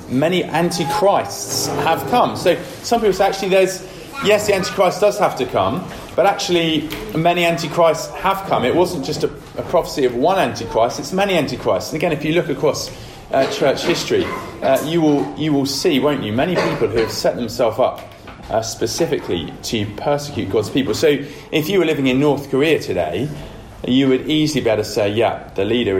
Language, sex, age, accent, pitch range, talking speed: English, male, 30-49, British, 110-165 Hz, 195 wpm